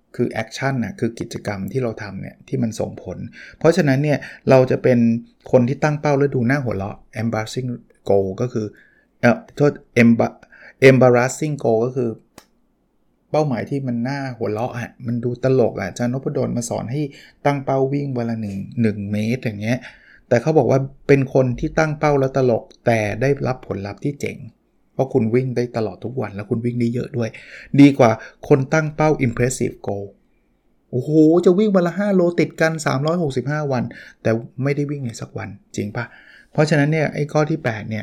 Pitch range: 115-145 Hz